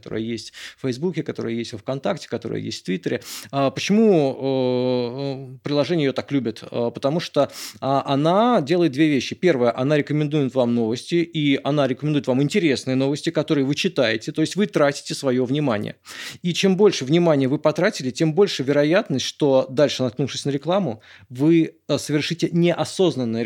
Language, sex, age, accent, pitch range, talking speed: Russian, male, 20-39, native, 130-165 Hz, 155 wpm